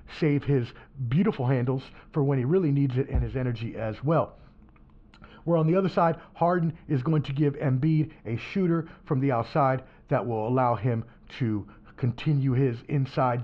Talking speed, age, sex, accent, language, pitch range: 175 wpm, 40-59, male, American, English, 130-160 Hz